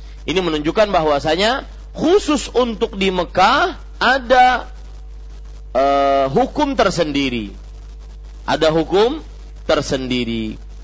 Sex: male